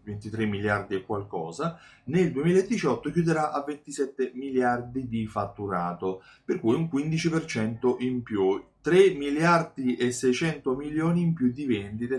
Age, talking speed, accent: 30-49, 135 wpm, native